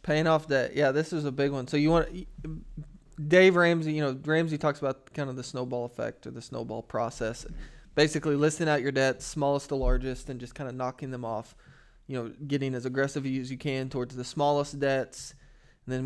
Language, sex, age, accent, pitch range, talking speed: English, male, 20-39, American, 130-155 Hz, 215 wpm